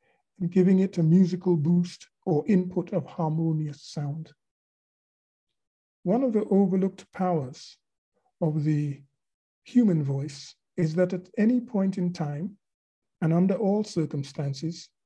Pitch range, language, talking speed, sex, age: 150-185 Hz, English, 125 wpm, male, 50-69